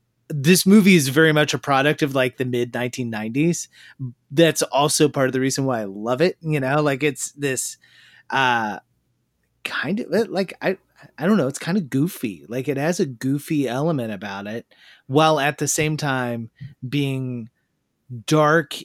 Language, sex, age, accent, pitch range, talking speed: English, male, 30-49, American, 125-150 Hz, 170 wpm